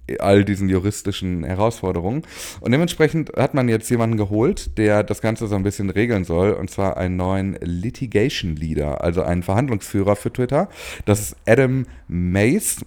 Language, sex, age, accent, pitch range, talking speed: German, male, 30-49, German, 85-115 Hz, 160 wpm